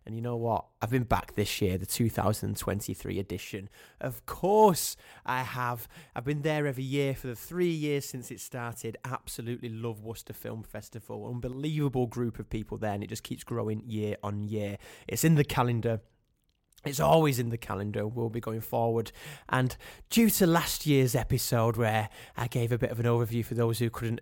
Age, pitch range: 20-39, 110-140 Hz